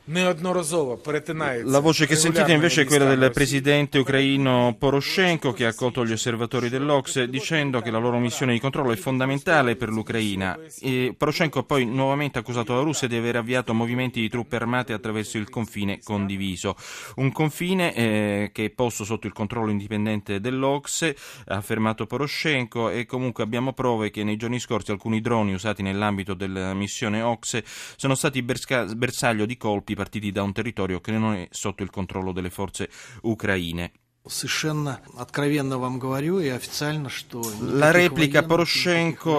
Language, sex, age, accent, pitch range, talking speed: Italian, male, 30-49, native, 110-135 Hz, 145 wpm